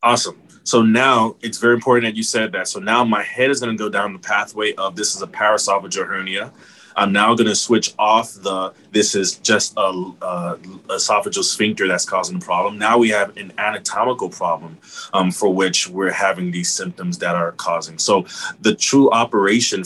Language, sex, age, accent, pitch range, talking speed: English, male, 20-39, American, 95-120 Hz, 200 wpm